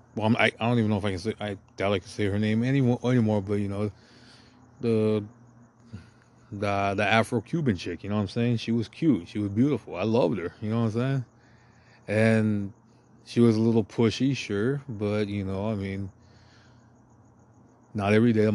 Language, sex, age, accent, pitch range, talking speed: English, male, 20-39, American, 100-120 Hz, 195 wpm